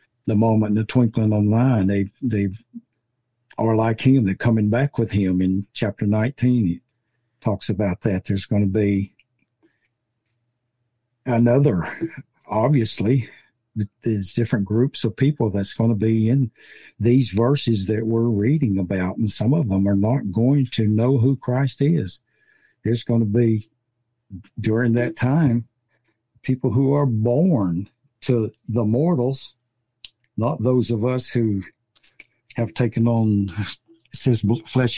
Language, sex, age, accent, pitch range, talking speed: English, male, 60-79, American, 105-125 Hz, 140 wpm